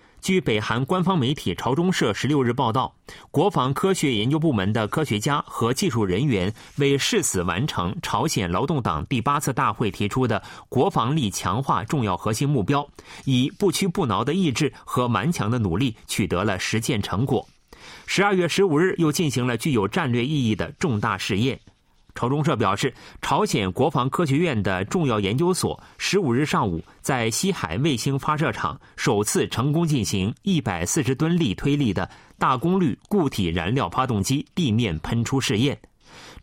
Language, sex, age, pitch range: Chinese, male, 30-49, 110-160 Hz